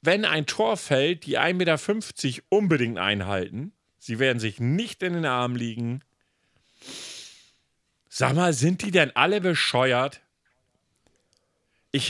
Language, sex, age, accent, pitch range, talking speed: German, male, 40-59, German, 110-155 Hz, 125 wpm